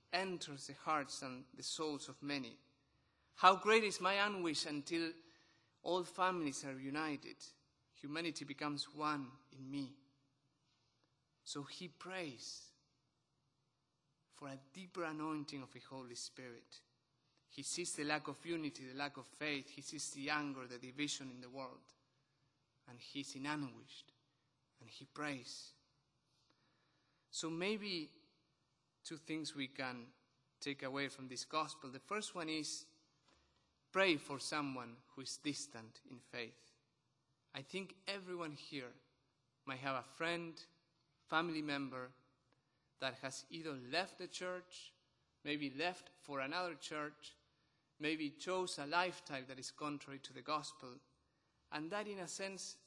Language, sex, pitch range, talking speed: English, male, 135-160 Hz, 135 wpm